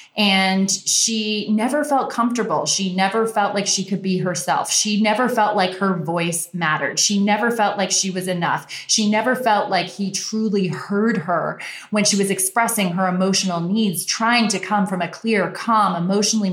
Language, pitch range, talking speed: English, 185-230 Hz, 180 wpm